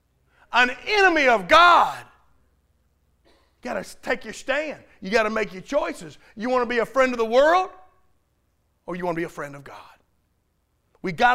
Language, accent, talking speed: English, American, 190 wpm